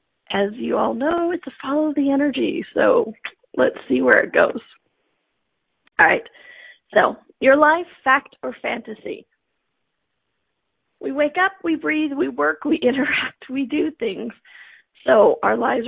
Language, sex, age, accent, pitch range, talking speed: English, female, 40-59, American, 245-325 Hz, 135 wpm